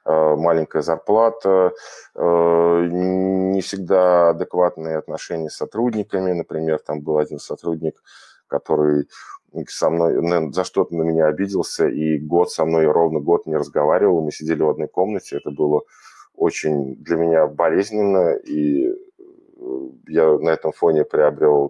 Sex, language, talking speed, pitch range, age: male, Russian, 125 wpm, 80-120 Hz, 20-39